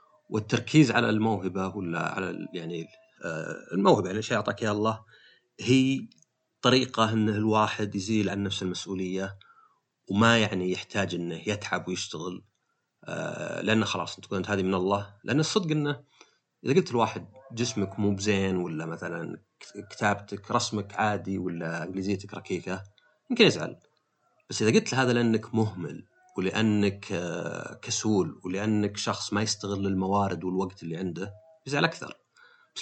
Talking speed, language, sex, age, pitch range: 135 wpm, Arabic, male, 30-49, 95-125 Hz